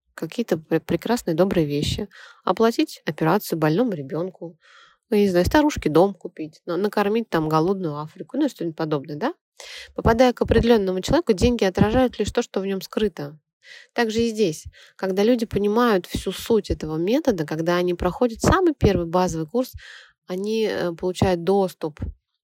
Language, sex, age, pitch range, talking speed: Russian, female, 20-39, 165-225 Hz, 145 wpm